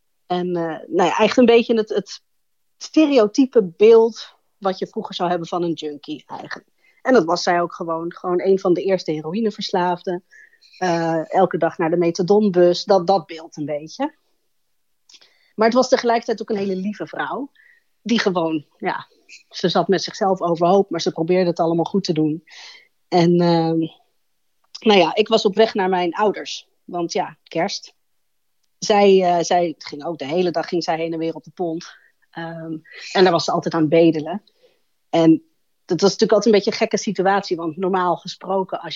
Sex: female